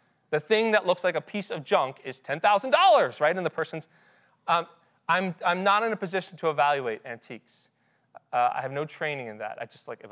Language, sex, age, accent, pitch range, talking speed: English, male, 30-49, American, 145-195 Hz, 215 wpm